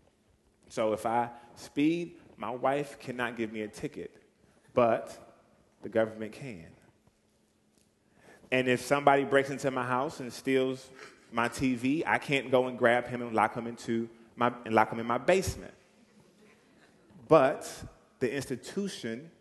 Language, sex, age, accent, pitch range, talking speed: English, male, 30-49, American, 115-140 Hz, 140 wpm